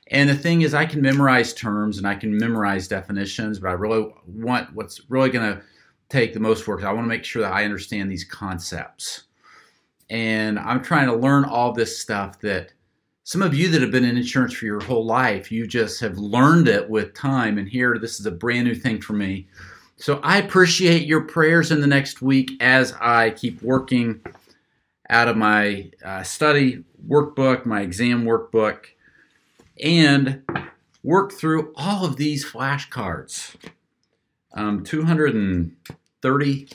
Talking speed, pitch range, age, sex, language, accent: 170 wpm, 100-135 Hz, 40-59, male, English, American